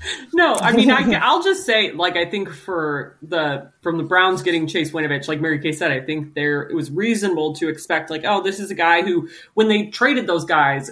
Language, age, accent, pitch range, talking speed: English, 30-49, American, 160-205 Hz, 225 wpm